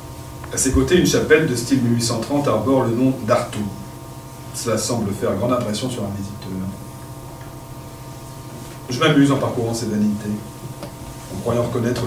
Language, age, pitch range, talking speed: French, 40-59, 105-135 Hz, 145 wpm